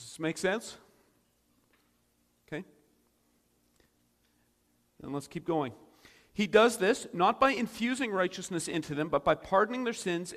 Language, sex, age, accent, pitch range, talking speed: English, male, 50-69, American, 130-190 Hz, 135 wpm